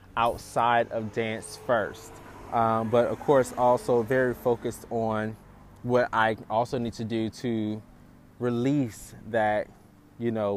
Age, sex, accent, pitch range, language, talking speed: 20-39, male, American, 110-135 Hz, English, 130 wpm